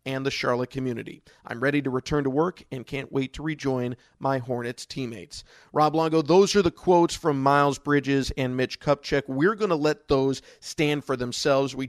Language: English